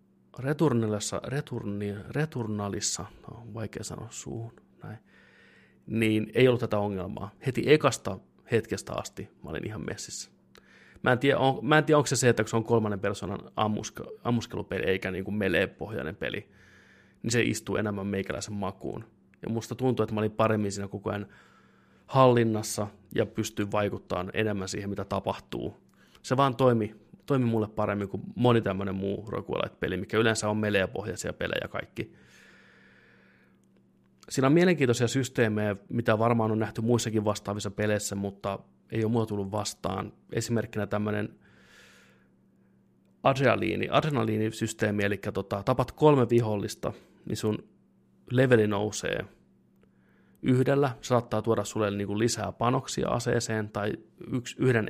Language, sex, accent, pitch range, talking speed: Finnish, male, native, 100-120 Hz, 130 wpm